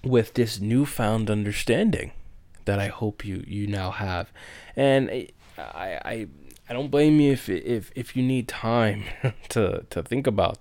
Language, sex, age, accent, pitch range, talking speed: English, male, 20-39, American, 100-115 Hz, 160 wpm